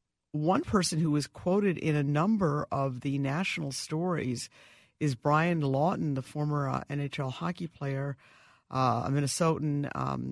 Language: English